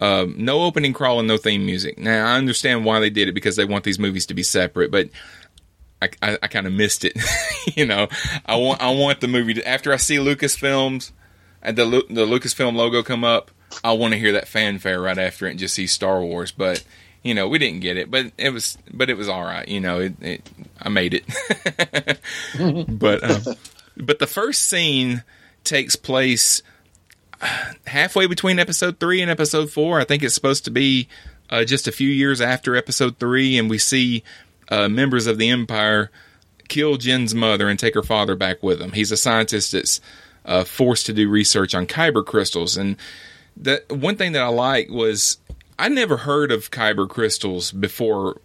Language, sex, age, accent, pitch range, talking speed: English, male, 30-49, American, 100-135 Hz, 200 wpm